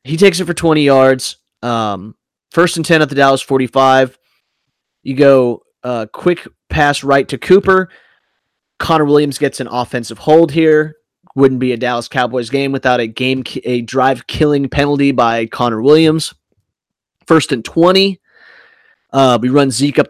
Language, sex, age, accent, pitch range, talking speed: English, male, 20-39, American, 125-160 Hz, 150 wpm